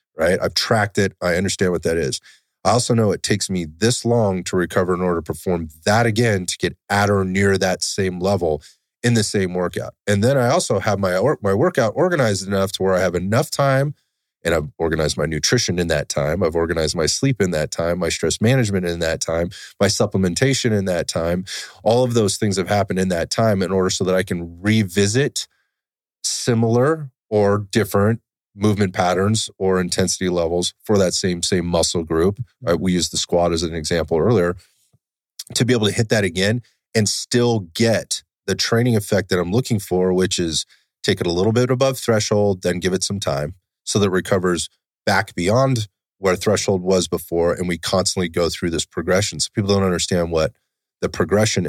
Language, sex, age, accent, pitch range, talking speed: English, male, 30-49, American, 90-110 Hz, 200 wpm